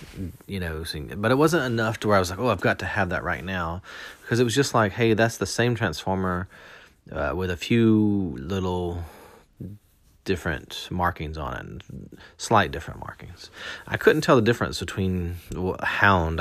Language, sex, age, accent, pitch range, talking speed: English, male, 30-49, American, 85-105 Hz, 175 wpm